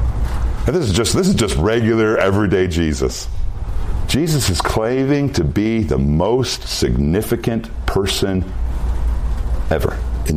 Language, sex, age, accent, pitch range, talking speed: English, male, 50-69, American, 75-110 Hz, 115 wpm